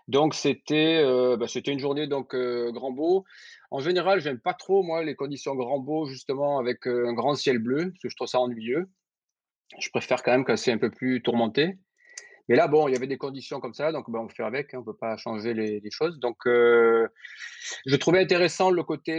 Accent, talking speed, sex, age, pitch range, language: French, 240 wpm, male, 30-49, 120-155 Hz, French